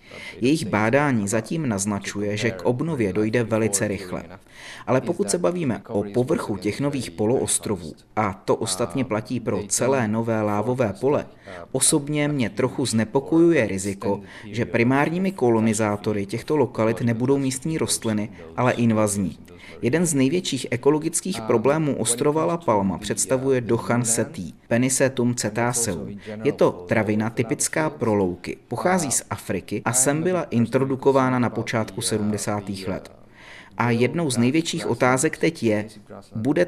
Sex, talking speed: male, 135 wpm